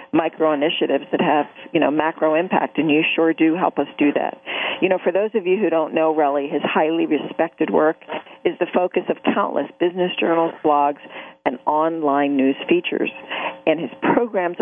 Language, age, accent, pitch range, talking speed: English, 40-59, American, 150-185 Hz, 180 wpm